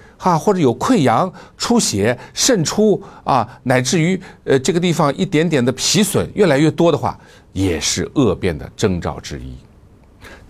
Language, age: Chinese, 60-79